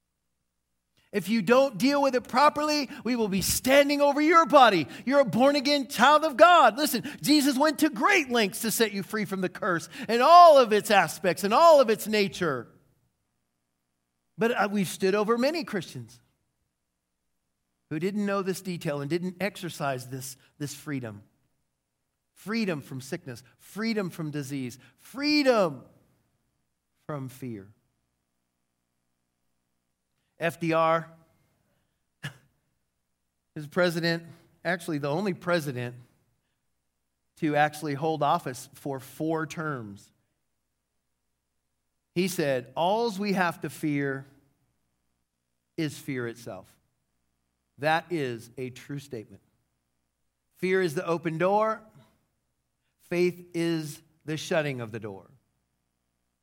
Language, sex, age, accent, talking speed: English, male, 40-59, American, 120 wpm